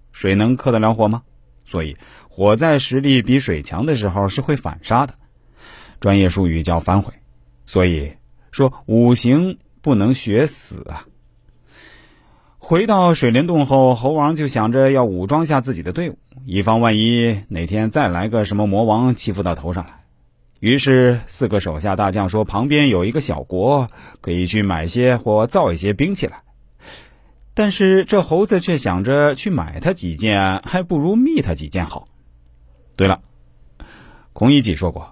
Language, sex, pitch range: Chinese, male, 90-135 Hz